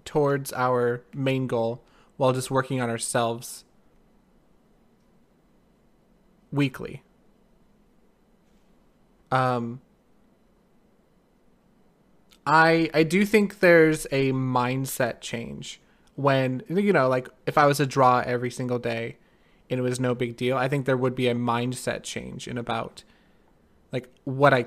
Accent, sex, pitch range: American, male, 125-175 Hz